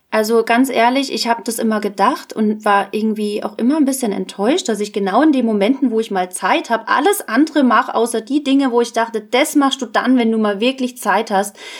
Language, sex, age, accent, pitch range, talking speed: German, female, 20-39, German, 220-265 Hz, 235 wpm